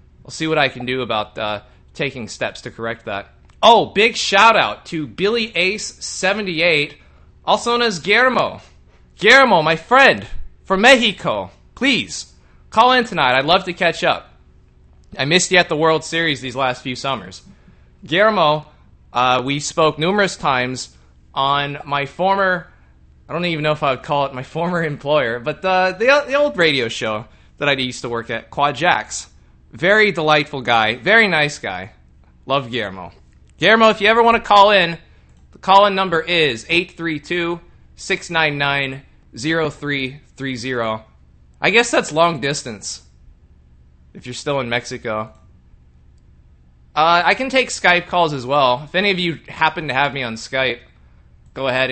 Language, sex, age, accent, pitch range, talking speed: English, male, 20-39, American, 110-175 Hz, 155 wpm